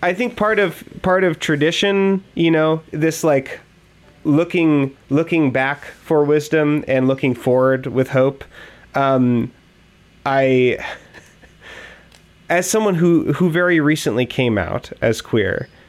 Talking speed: 125 wpm